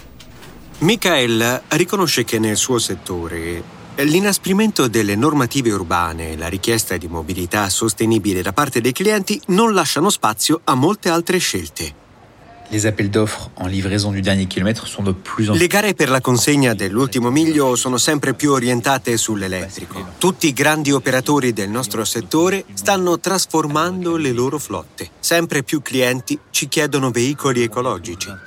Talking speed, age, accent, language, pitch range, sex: 120 wpm, 30-49, native, Italian, 105-155 Hz, male